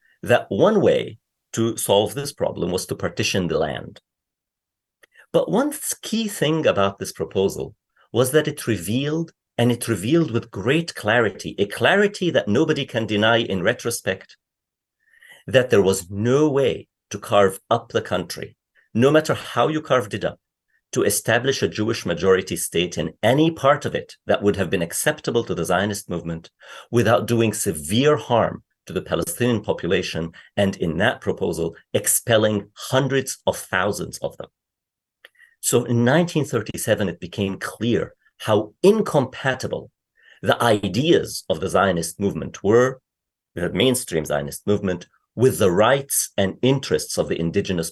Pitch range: 100-135 Hz